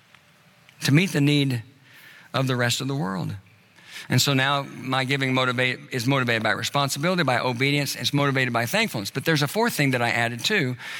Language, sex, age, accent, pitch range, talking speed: English, male, 60-79, American, 135-165 Hz, 190 wpm